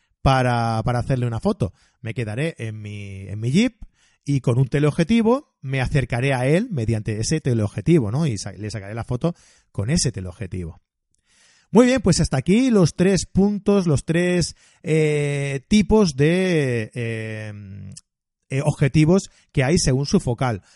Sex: male